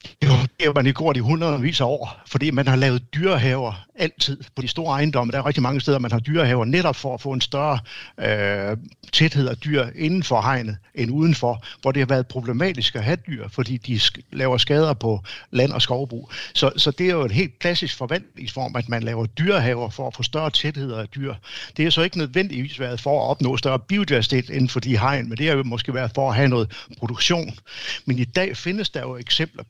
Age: 60-79